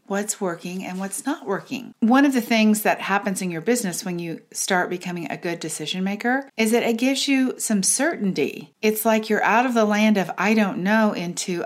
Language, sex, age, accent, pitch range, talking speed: English, female, 40-59, American, 175-225 Hz, 215 wpm